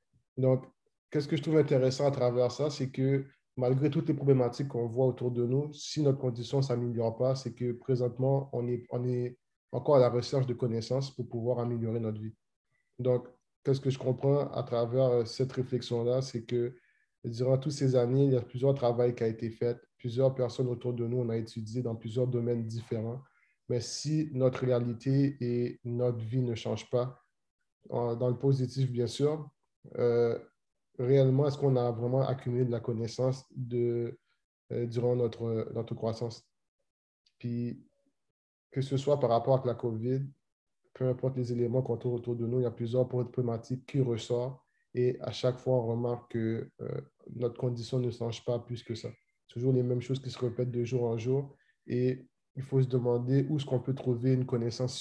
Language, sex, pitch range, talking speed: French, male, 120-130 Hz, 190 wpm